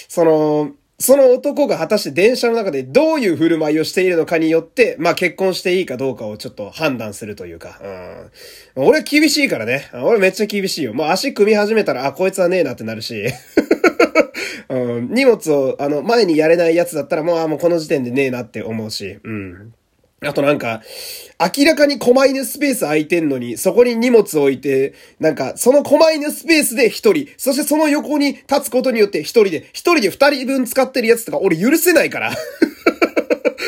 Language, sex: Japanese, male